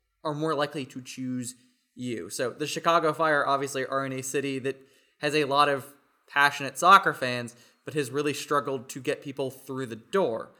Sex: male